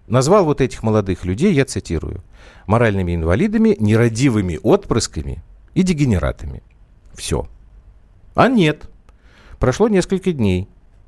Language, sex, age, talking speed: Russian, male, 50-69, 105 wpm